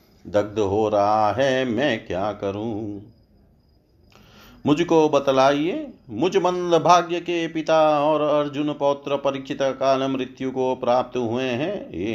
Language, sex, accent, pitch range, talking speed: Hindi, male, native, 105-125 Hz, 125 wpm